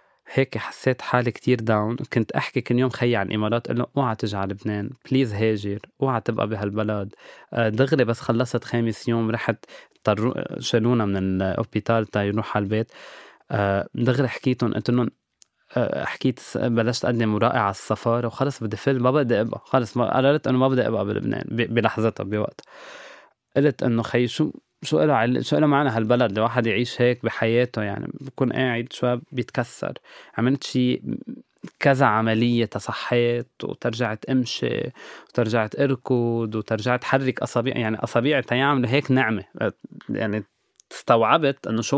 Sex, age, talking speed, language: male, 20-39, 145 wpm, Arabic